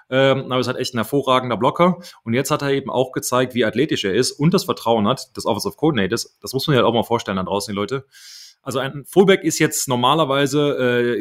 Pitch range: 100-130 Hz